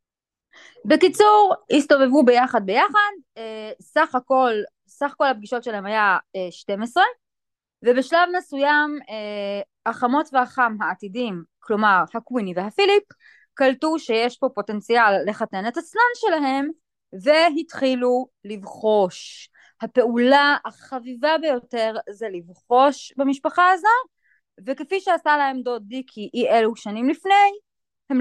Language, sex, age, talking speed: Hebrew, female, 20-39, 100 wpm